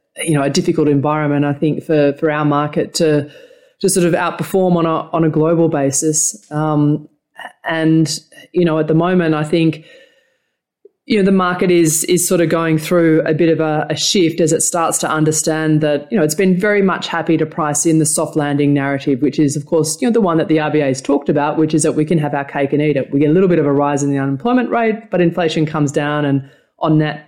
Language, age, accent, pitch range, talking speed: English, 20-39, Australian, 150-175 Hz, 245 wpm